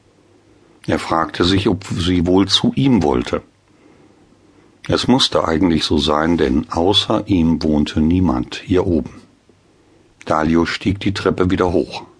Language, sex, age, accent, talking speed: German, male, 50-69, German, 135 wpm